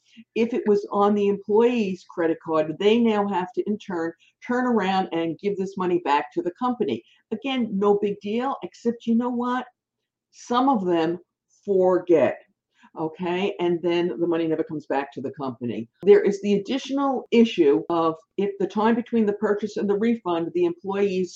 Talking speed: 185 wpm